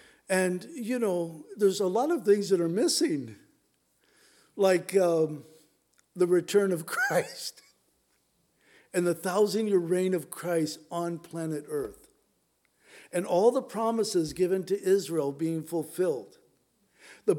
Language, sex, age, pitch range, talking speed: English, male, 60-79, 165-200 Hz, 125 wpm